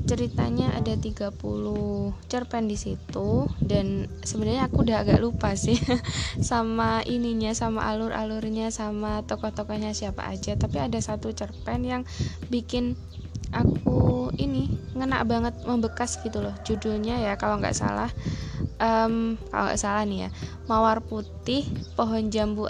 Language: Indonesian